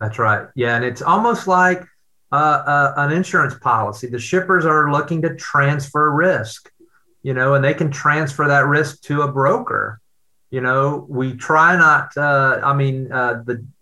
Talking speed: 175 wpm